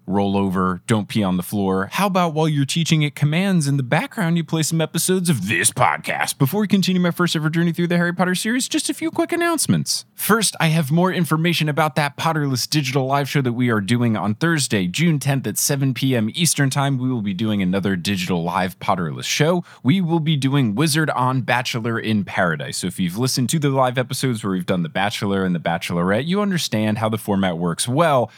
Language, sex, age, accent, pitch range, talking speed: English, male, 20-39, American, 105-165 Hz, 225 wpm